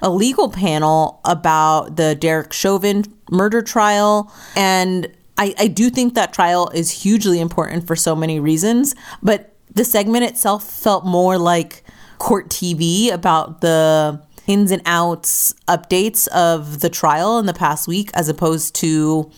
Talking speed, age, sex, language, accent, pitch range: 150 wpm, 30-49, female, English, American, 160-205 Hz